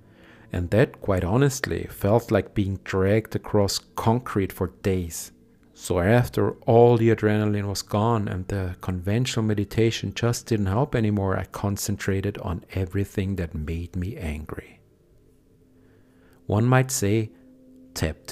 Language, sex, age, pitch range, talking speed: English, male, 50-69, 100-120 Hz, 130 wpm